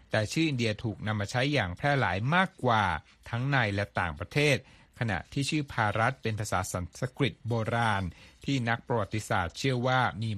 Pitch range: 100-130 Hz